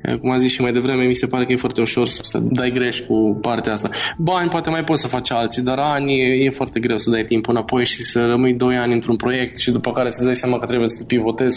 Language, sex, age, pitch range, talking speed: Romanian, male, 20-39, 120-135 Hz, 275 wpm